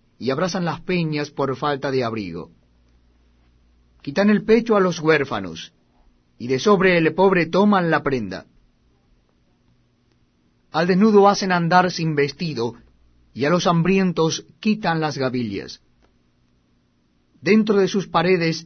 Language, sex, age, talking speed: Spanish, male, 40-59, 125 wpm